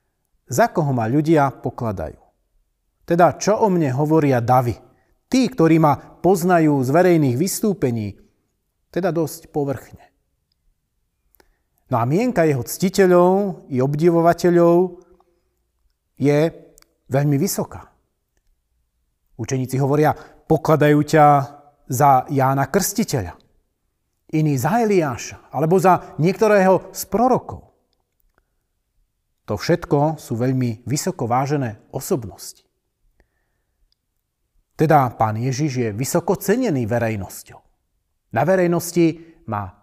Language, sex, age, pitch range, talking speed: Slovak, male, 40-59, 130-175 Hz, 95 wpm